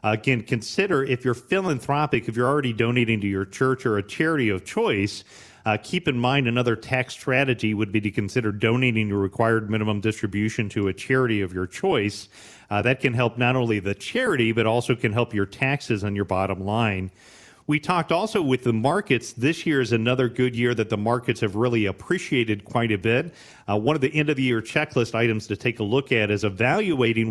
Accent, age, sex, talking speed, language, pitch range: American, 40-59, male, 205 wpm, English, 105-125 Hz